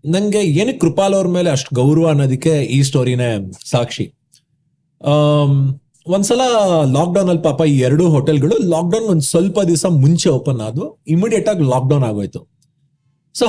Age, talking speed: 30-49, 140 wpm